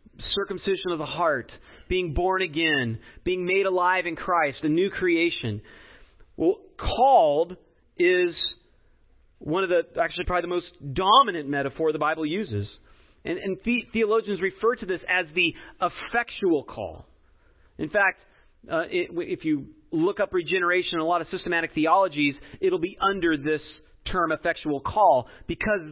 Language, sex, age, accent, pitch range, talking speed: English, male, 40-59, American, 160-225 Hz, 150 wpm